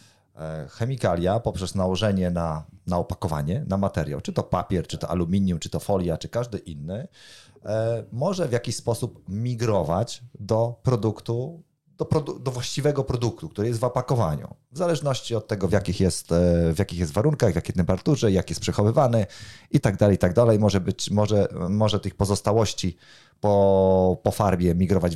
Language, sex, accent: Polish, male, native